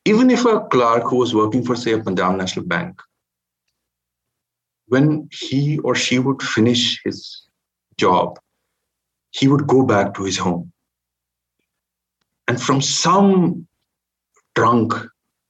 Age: 50-69